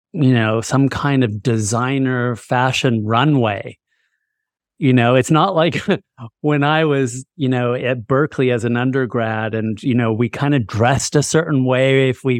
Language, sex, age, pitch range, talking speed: English, male, 30-49, 120-140 Hz, 170 wpm